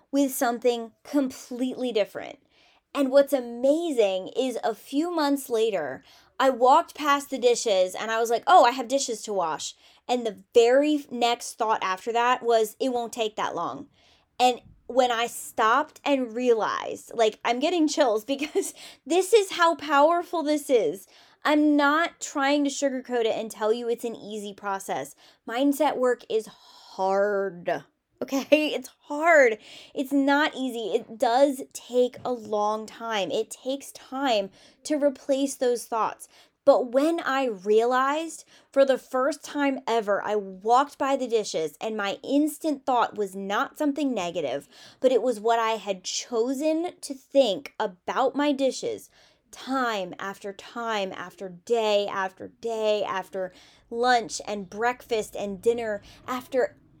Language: English